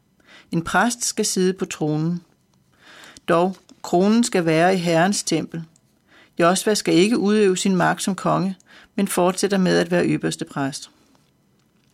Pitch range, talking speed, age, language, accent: 170-200 Hz, 140 wpm, 40-59, Danish, native